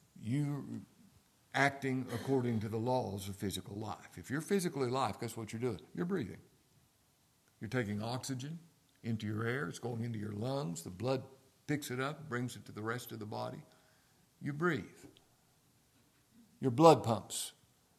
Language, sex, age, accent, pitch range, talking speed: English, male, 60-79, American, 115-165 Hz, 160 wpm